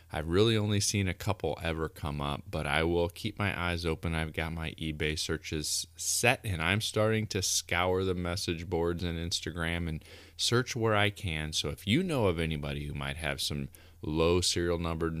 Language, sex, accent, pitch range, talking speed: English, male, American, 80-100 Hz, 195 wpm